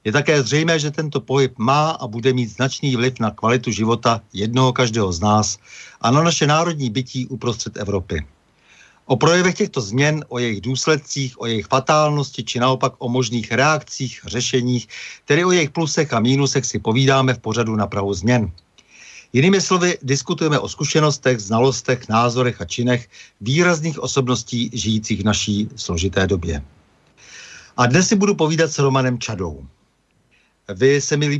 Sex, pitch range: male, 110-140 Hz